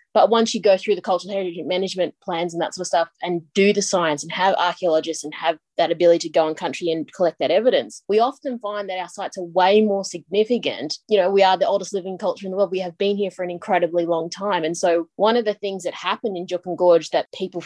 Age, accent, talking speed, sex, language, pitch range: 20-39, Australian, 260 wpm, female, English, 175-200 Hz